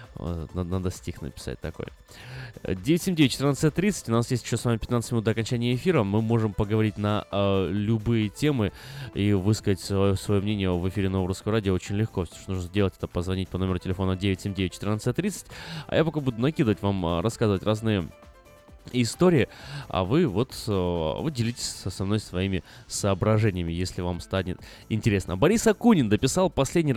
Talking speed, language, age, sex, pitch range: 160 wpm, Russian, 20-39, male, 95-125 Hz